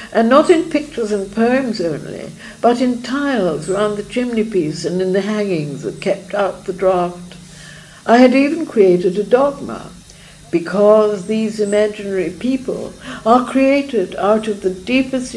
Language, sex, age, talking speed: English, female, 60-79, 150 wpm